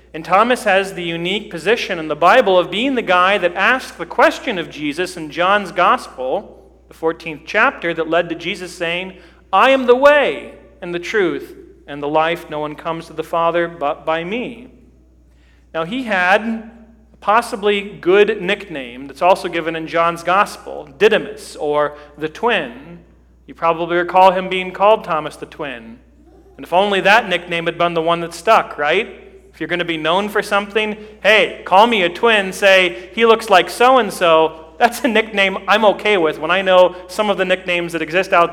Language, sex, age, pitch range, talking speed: English, male, 40-59, 165-205 Hz, 185 wpm